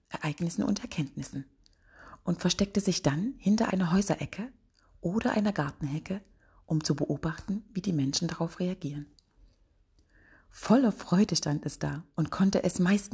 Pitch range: 145-185 Hz